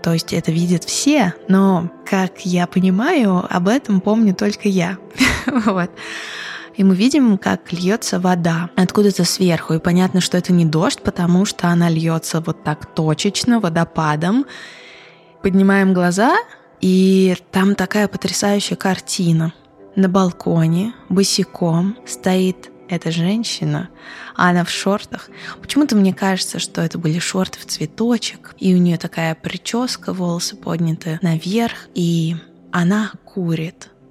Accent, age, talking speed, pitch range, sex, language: native, 20-39, 130 wpm, 170-205 Hz, female, Russian